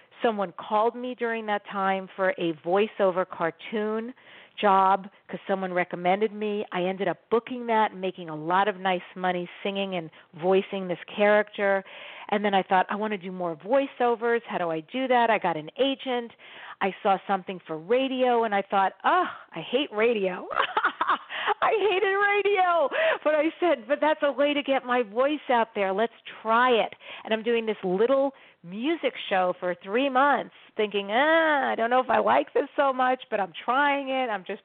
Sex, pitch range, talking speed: female, 190-255 Hz, 190 wpm